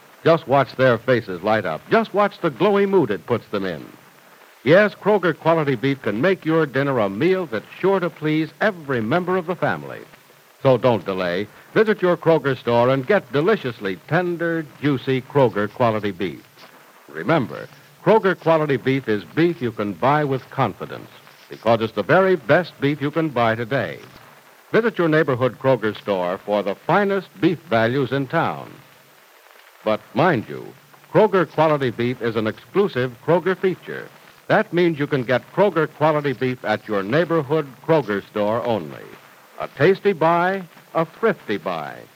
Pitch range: 120-175 Hz